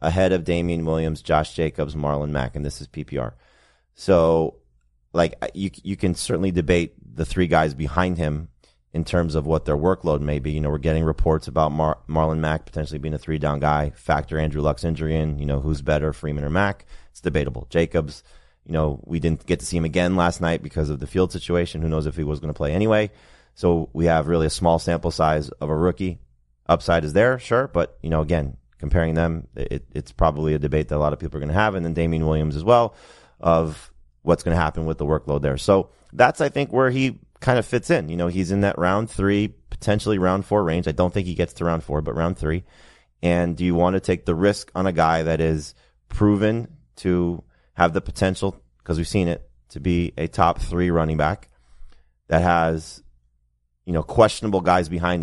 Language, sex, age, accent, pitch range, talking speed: English, male, 30-49, American, 75-90 Hz, 220 wpm